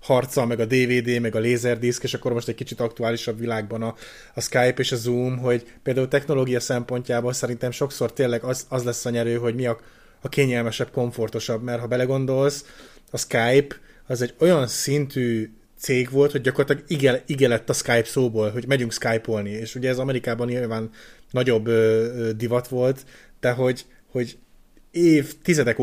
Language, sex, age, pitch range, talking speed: Hungarian, male, 20-39, 115-135 Hz, 165 wpm